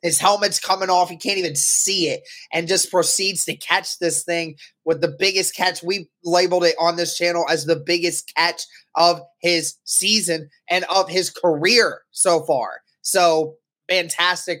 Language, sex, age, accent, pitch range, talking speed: English, male, 20-39, American, 160-185 Hz, 170 wpm